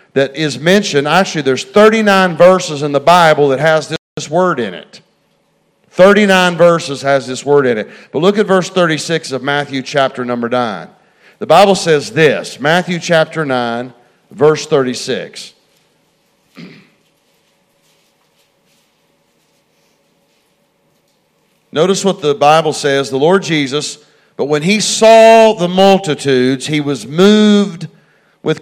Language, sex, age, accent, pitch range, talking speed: English, male, 50-69, American, 140-195 Hz, 130 wpm